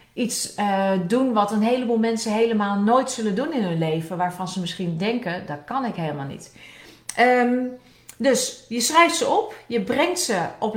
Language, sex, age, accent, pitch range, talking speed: Dutch, female, 40-59, Dutch, 195-265 Hz, 185 wpm